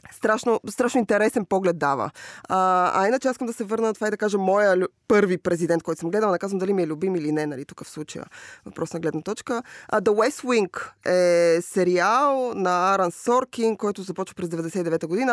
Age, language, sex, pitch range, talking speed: 20-39, Bulgarian, female, 170-225 Hz, 210 wpm